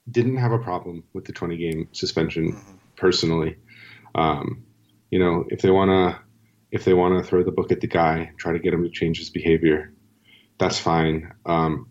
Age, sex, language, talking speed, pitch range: 30-49, male, English, 185 wpm, 85-110 Hz